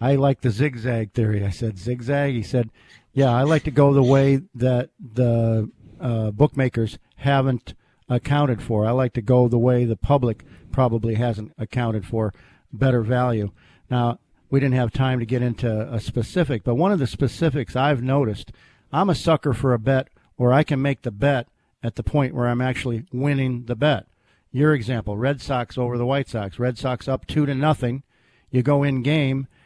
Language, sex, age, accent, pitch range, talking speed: English, male, 50-69, American, 115-140 Hz, 190 wpm